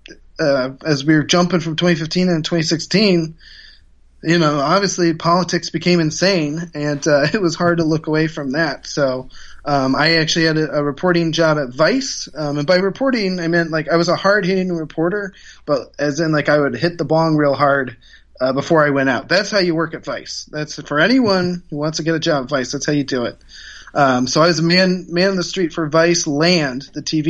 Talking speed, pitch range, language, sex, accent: 220 wpm, 145-170 Hz, English, male, American